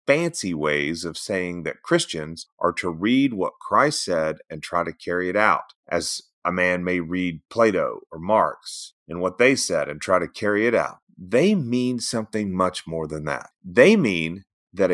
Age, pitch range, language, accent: 30-49, 90-135 Hz, English, American